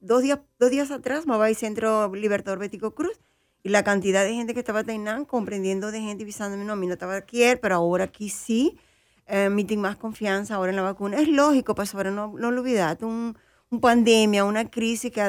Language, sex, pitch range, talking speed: English, female, 200-245 Hz, 225 wpm